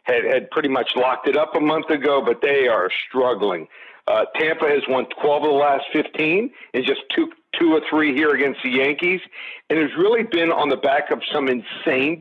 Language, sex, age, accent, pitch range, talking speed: English, male, 50-69, American, 145-200 Hz, 210 wpm